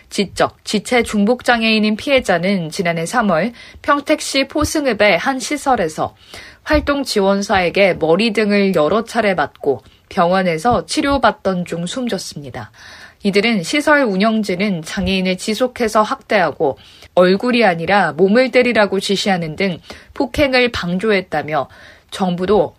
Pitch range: 185-245 Hz